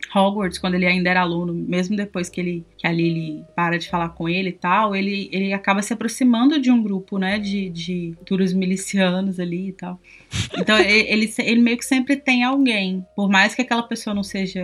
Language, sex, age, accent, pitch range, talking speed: Portuguese, female, 20-39, Brazilian, 185-225 Hz, 215 wpm